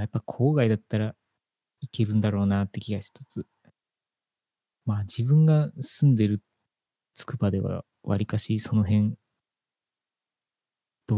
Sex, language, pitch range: male, Japanese, 105-135 Hz